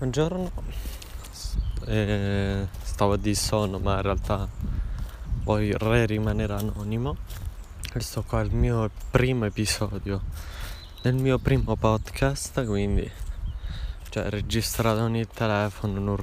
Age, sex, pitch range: 20-39, male, 80-110 Hz